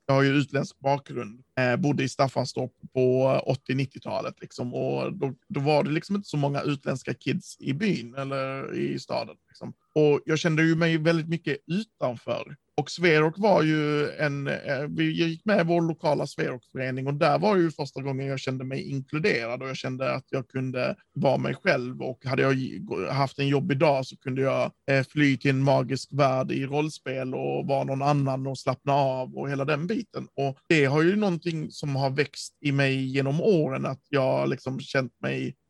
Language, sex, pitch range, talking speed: Swedish, male, 135-155 Hz, 190 wpm